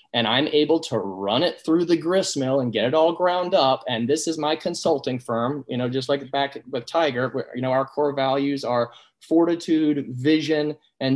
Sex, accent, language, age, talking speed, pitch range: male, American, English, 20-39, 210 wpm, 125-160 Hz